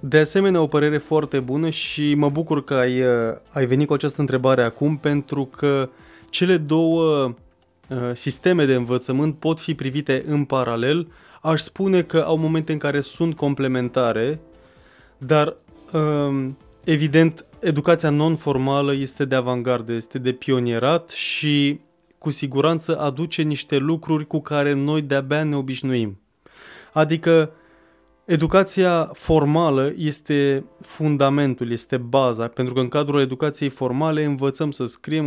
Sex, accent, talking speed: male, native, 130 wpm